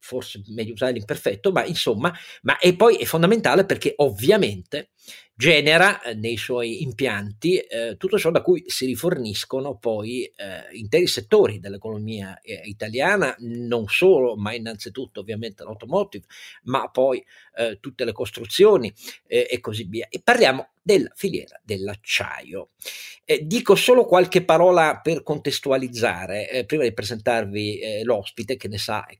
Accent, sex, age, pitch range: native, male, 50-69, 110-165 Hz